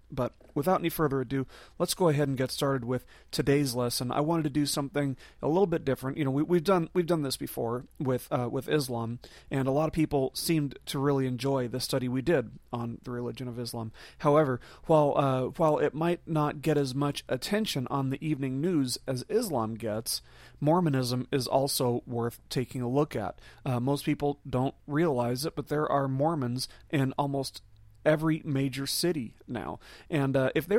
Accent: American